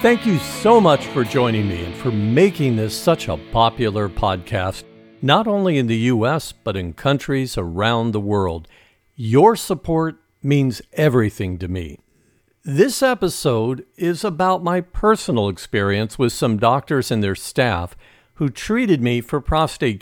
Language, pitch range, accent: English, 110-160 Hz, American